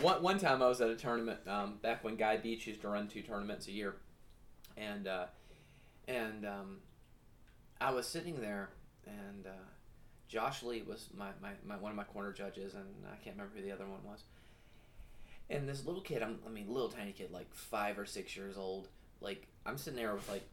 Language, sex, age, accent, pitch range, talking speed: English, male, 30-49, American, 100-140 Hz, 210 wpm